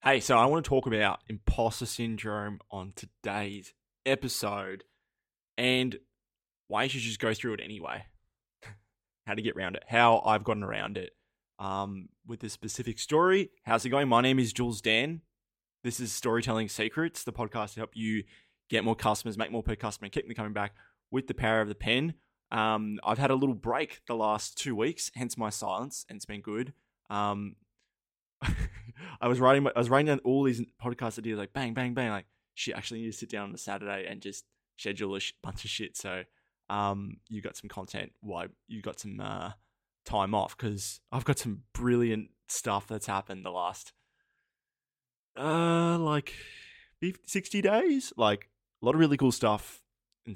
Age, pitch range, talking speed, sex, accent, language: 20-39, 105-125 Hz, 190 wpm, male, Australian, English